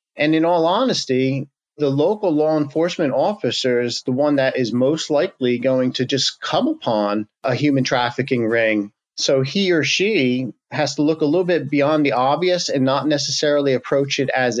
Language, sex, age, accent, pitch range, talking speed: English, male, 40-59, American, 130-155 Hz, 175 wpm